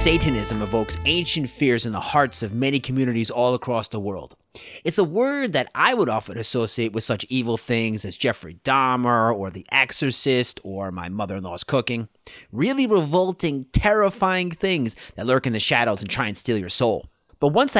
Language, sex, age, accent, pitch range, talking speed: English, male, 30-49, American, 115-155 Hz, 180 wpm